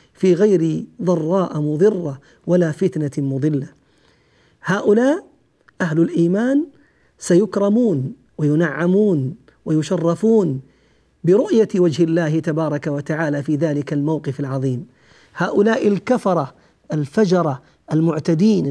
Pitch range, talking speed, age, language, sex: 160-230 Hz, 85 wpm, 50-69, Arabic, male